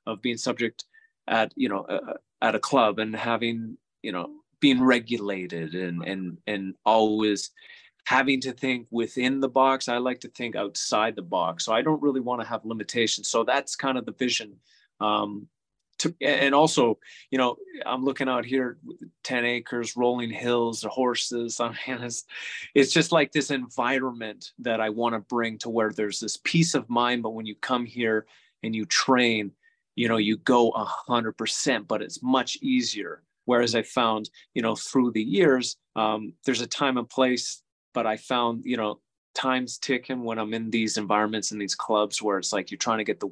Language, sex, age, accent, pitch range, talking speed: English, male, 30-49, American, 110-130 Hz, 190 wpm